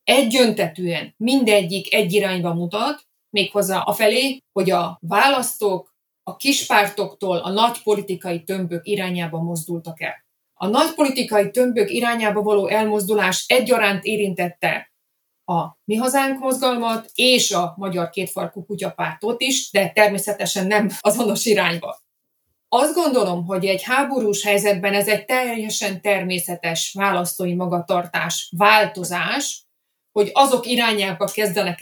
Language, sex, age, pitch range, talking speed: Hungarian, female, 30-49, 180-230 Hz, 115 wpm